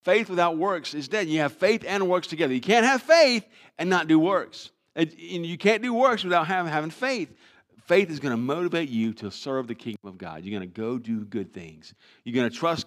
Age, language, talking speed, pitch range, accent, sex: 50-69, English, 235 wpm, 130-180 Hz, American, male